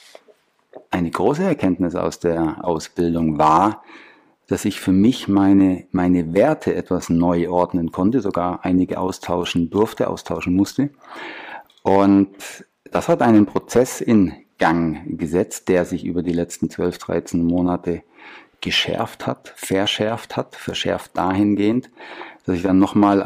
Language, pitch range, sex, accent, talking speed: German, 90-100 Hz, male, German, 130 wpm